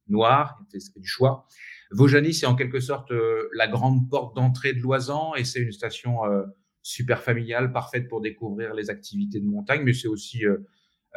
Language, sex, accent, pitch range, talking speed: French, male, French, 105-135 Hz, 185 wpm